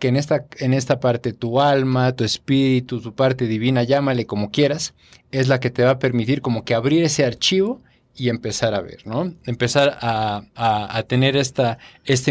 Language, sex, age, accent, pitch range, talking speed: Spanish, male, 40-59, Mexican, 120-150 Hz, 185 wpm